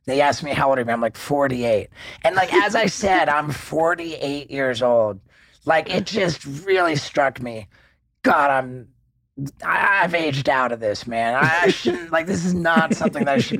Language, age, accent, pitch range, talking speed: English, 40-59, American, 135-165 Hz, 195 wpm